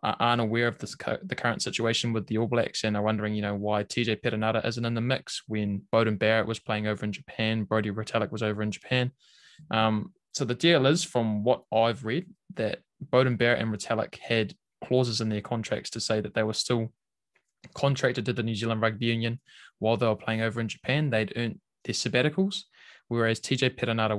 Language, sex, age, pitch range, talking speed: English, male, 20-39, 105-120 Hz, 205 wpm